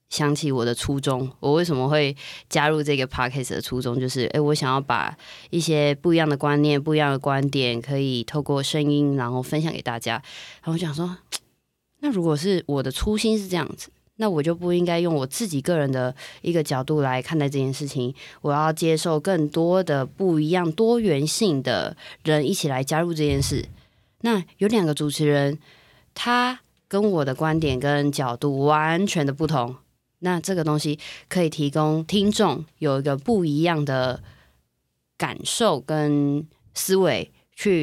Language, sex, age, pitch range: Chinese, female, 20-39, 140-170 Hz